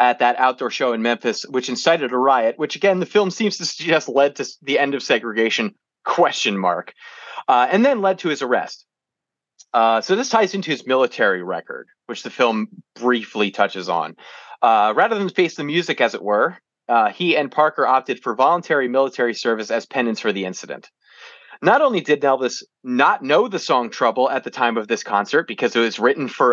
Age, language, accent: 30-49, English, American